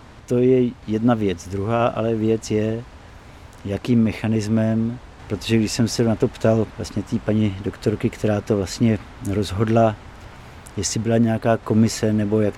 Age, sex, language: 50-69, male, Czech